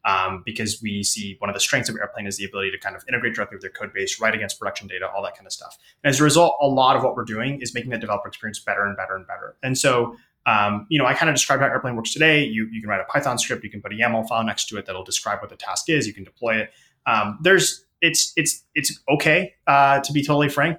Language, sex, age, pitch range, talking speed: English, male, 20-39, 105-140 Hz, 290 wpm